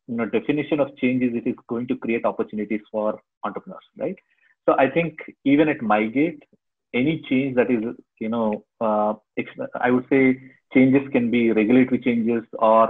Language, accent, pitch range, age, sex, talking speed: English, Indian, 110-130 Hz, 30-49, male, 170 wpm